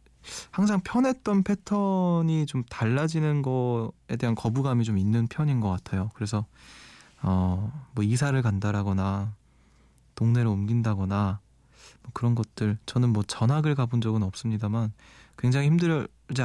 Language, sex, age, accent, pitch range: Korean, male, 20-39, native, 105-145 Hz